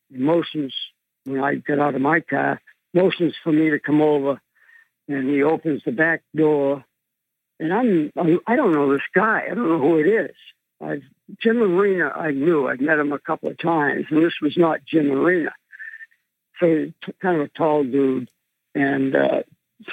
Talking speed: 185 wpm